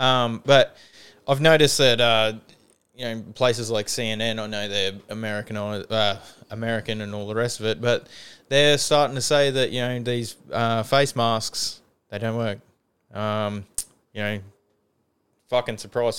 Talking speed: 160 wpm